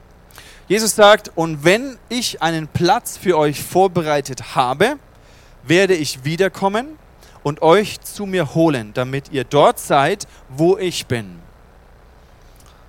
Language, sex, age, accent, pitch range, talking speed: German, male, 30-49, German, 125-185 Hz, 120 wpm